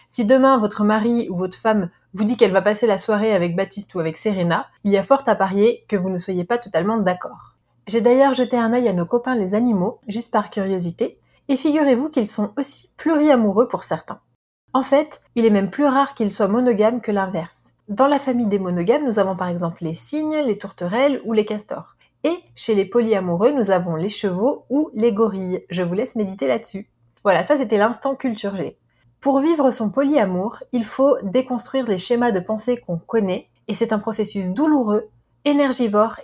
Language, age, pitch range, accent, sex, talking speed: French, 30-49, 195-250 Hz, French, female, 200 wpm